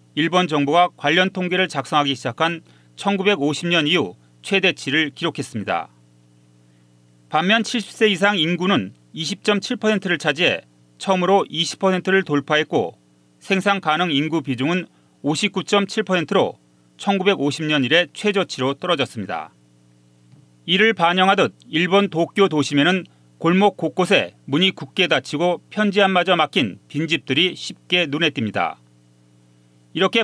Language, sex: Korean, male